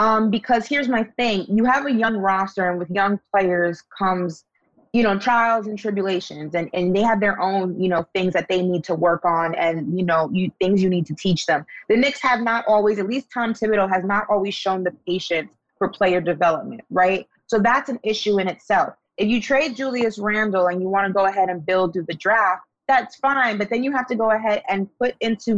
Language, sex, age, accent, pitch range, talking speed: English, female, 20-39, American, 190-230 Hz, 230 wpm